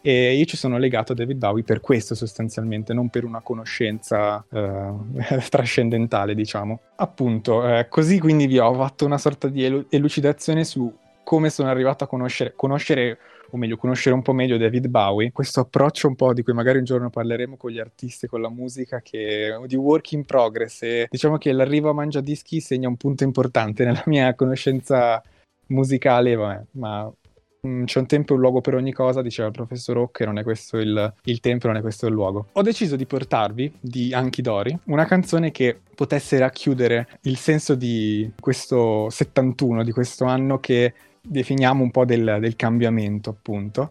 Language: Italian